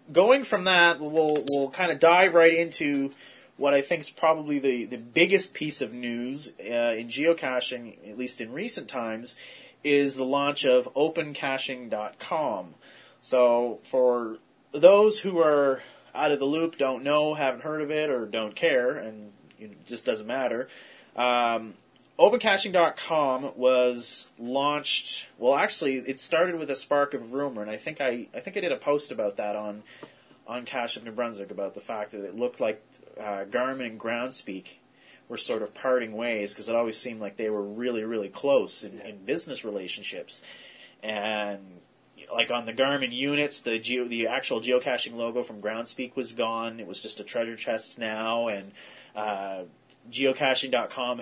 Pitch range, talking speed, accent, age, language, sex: 115-145 Hz, 170 wpm, American, 30-49, English, male